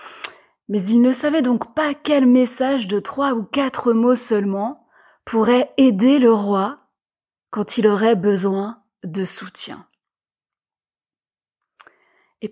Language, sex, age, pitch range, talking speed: French, female, 30-49, 205-255 Hz, 120 wpm